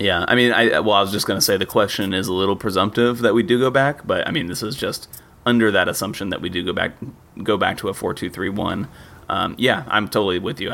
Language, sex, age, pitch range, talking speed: English, male, 30-49, 95-110 Hz, 255 wpm